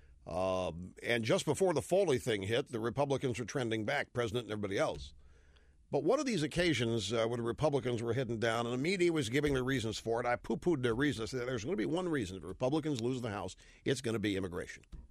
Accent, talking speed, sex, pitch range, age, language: American, 240 wpm, male, 115-180 Hz, 50-69, English